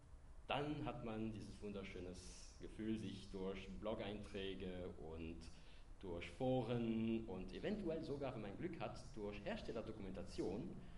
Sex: male